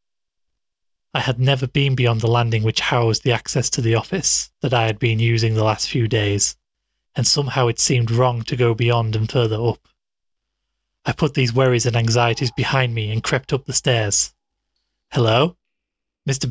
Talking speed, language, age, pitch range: 180 wpm, English, 30-49, 115-140 Hz